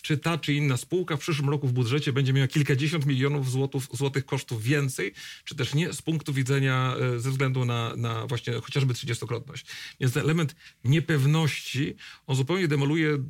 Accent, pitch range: native, 120-145 Hz